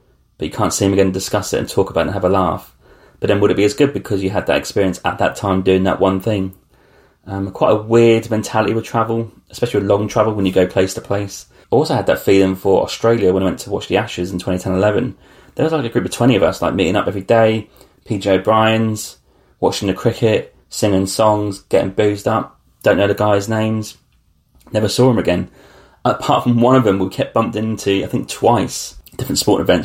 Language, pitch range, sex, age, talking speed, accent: English, 95-110 Hz, male, 30-49, 235 wpm, British